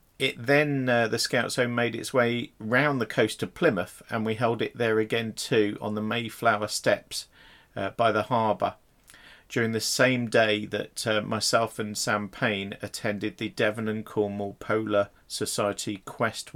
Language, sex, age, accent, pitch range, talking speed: English, male, 40-59, British, 105-125 Hz, 170 wpm